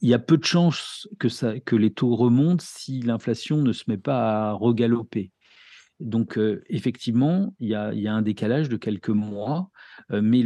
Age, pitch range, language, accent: 50-69, 105-125 Hz, French, French